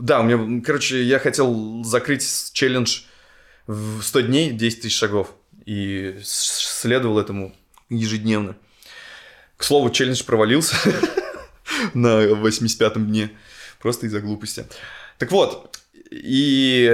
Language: Russian